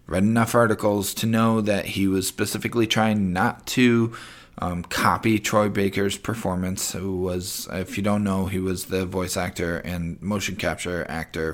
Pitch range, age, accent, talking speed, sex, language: 85-100 Hz, 20-39, American, 165 wpm, male, English